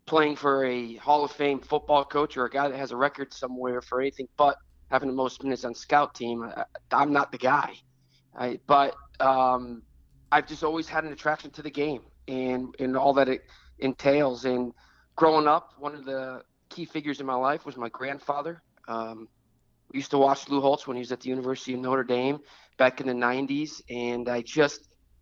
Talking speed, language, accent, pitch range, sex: 205 wpm, English, American, 125-150 Hz, male